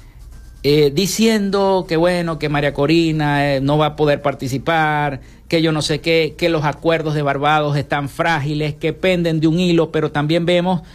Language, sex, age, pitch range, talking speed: Spanish, male, 50-69, 125-165 Hz, 180 wpm